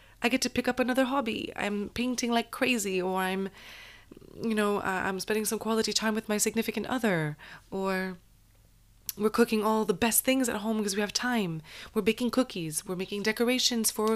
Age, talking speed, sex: 20-39, 185 wpm, female